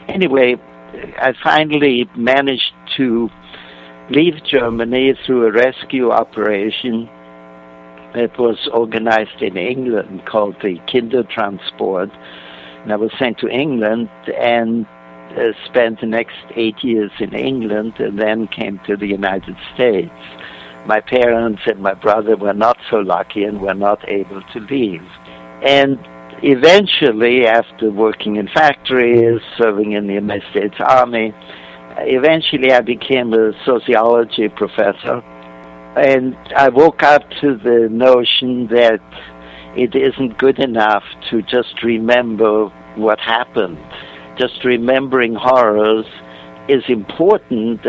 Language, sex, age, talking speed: English, male, 60-79, 120 wpm